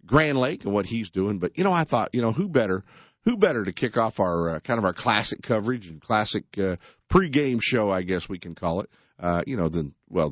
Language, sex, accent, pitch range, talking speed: English, male, American, 80-115 Hz, 250 wpm